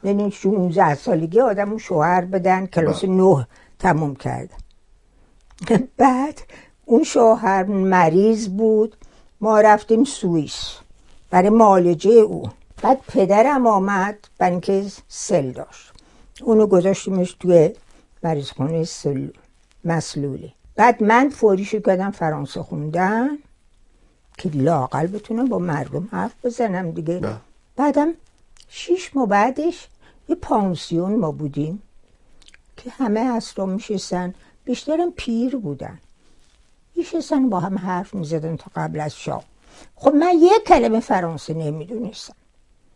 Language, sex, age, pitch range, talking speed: Persian, female, 60-79, 175-240 Hz, 110 wpm